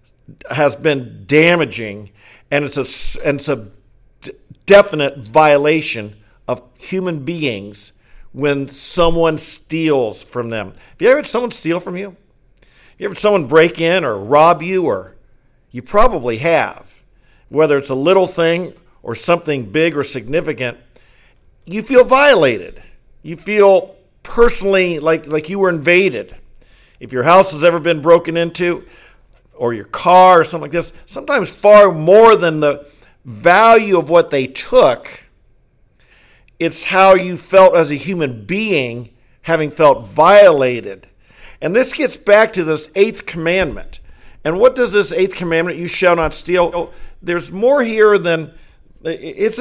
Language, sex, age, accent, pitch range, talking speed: English, male, 50-69, American, 140-185 Hz, 145 wpm